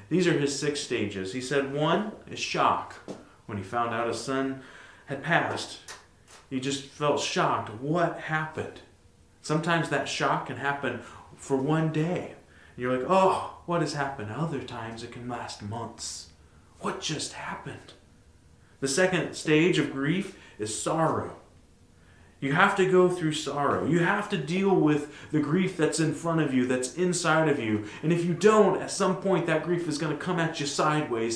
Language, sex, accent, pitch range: English, male, American, 115-155 Hz